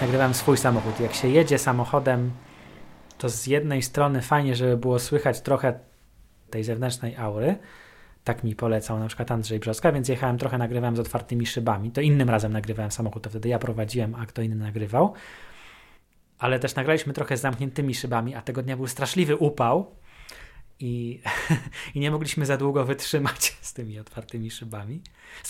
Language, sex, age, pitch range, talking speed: Polish, male, 20-39, 115-140 Hz, 165 wpm